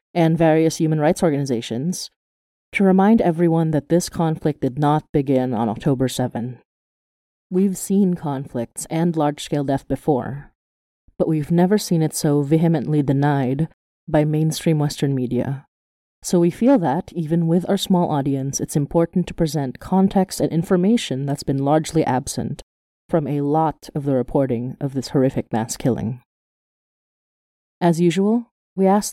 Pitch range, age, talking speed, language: 135-175 Hz, 30-49, 150 wpm, English